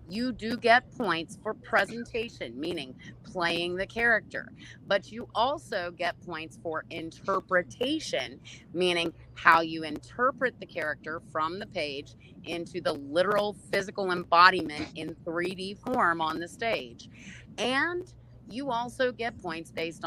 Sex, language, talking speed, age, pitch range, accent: female, English, 130 wpm, 30-49, 165-225 Hz, American